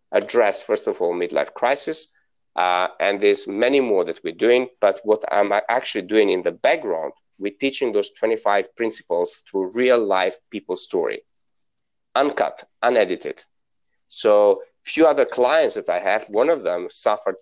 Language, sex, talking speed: English, male, 155 wpm